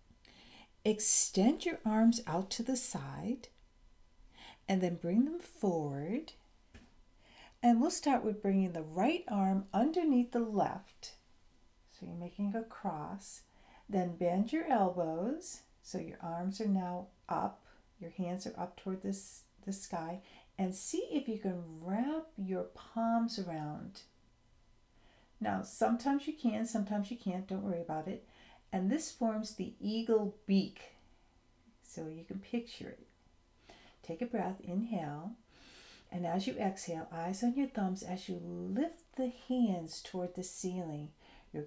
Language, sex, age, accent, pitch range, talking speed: English, female, 60-79, American, 170-235 Hz, 140 wpm